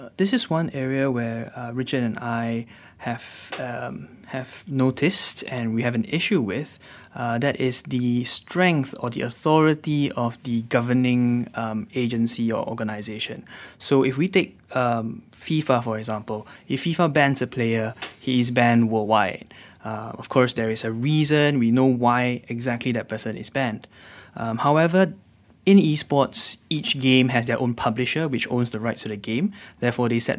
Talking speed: 170 wpm